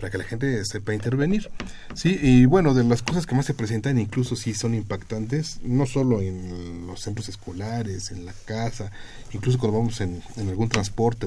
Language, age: Spanish, 40-59